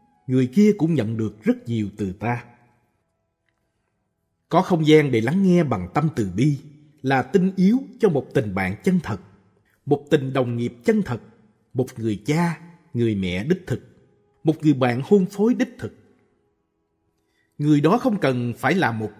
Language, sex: Vietnamese, male